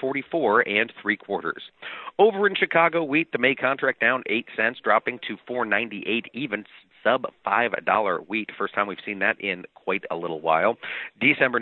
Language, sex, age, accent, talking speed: English, male, 40-59, American, 170 wpm